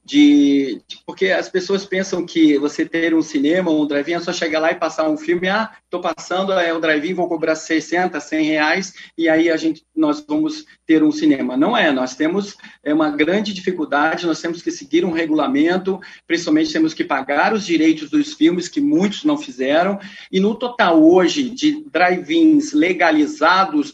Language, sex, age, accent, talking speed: Portuguese, male, 40-59, Brazilian, 190 wpm